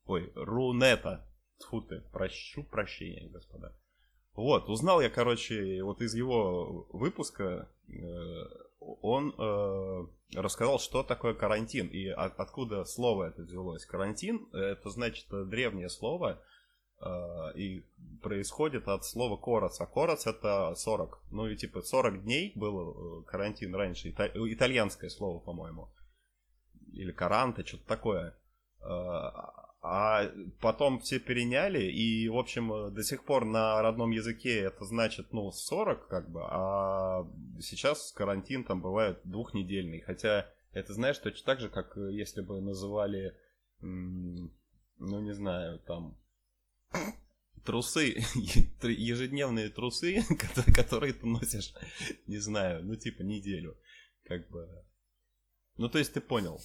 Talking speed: 125 wpm